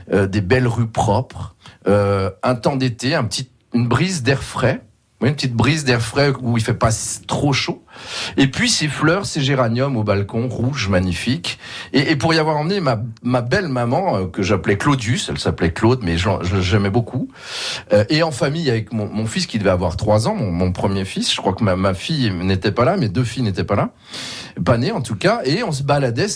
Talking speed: 225 wpm